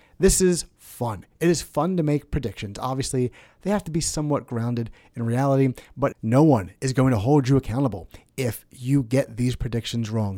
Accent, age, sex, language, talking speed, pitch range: American, 30-49, male, English, 190 wpm, 120-145 Hz